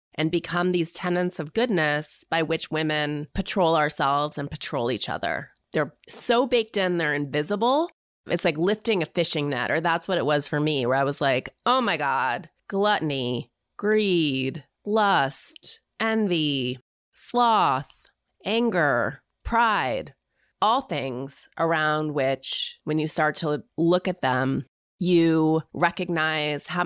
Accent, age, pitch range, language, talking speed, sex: American, 30-49, 145-180 Hz, English, 140 wpm, female